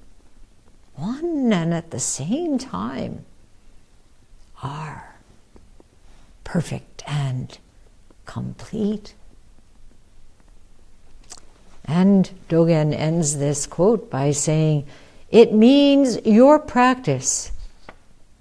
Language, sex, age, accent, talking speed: English, female, 60-79, American, 70 wpm